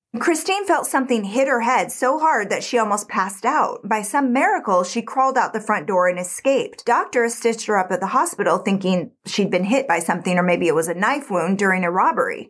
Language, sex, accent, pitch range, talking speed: English, female, American, 190-255 Hz, 225 wpm